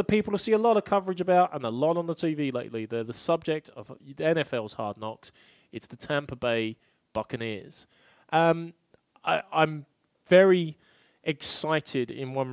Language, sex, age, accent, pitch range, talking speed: English, male, 30-49, British, 120-160 Hz, 170 wpm